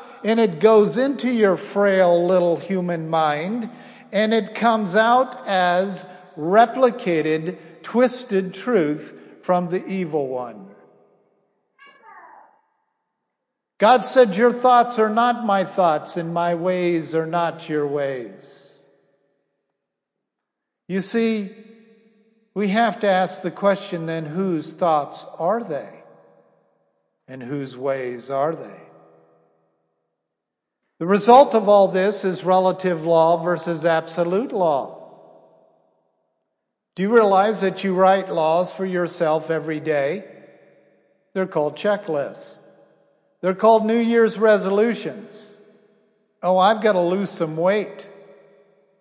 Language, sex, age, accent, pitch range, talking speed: English, male, 50-69, American, 155-215 Hz, 110 wpm